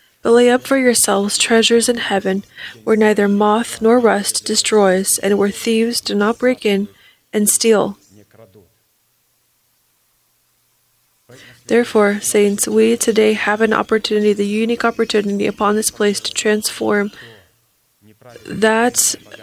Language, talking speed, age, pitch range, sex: English, 120 wpm, 20-39, 200-225 Hz, female